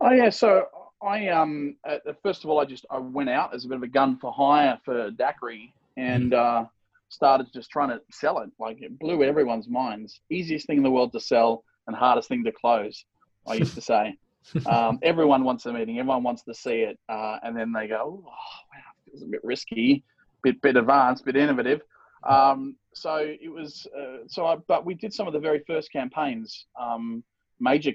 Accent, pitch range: Australian, 115-150 Hz